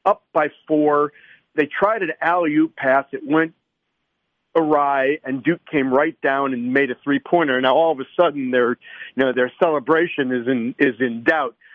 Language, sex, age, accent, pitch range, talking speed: English, male, 50-69, American, 130-160 Hz, 175 wpm